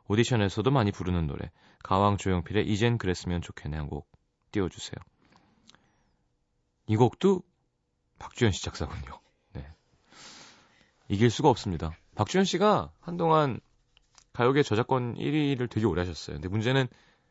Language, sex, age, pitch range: Korean, male, 30-49, 95-140 Hz